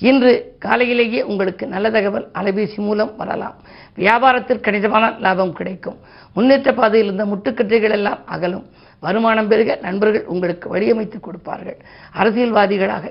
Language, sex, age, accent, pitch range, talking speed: Tamil, female, 50-69, native, 200-240 Hz, 115 wpm